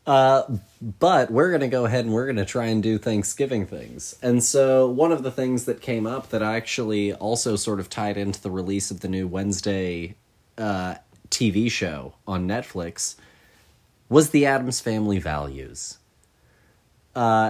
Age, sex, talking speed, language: 30-49, male, 170 wpm, English